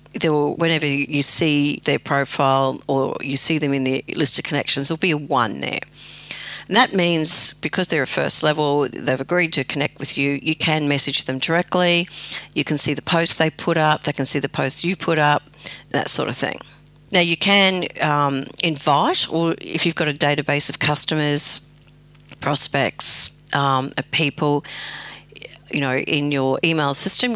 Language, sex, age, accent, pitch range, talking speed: English, female, 50-69, Australian, 140-165 Hz, 175 wpm